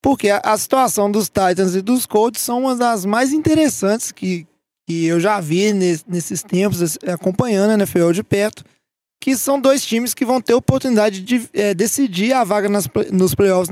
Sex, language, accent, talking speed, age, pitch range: male, Portuguese, Brazilian, 180 wpm, 20-39, 190-240 Hz